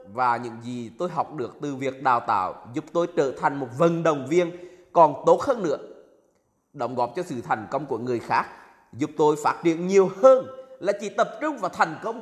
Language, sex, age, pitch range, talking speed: Vietnamese, male, 20-39, 145-220 Hz, 215 wpm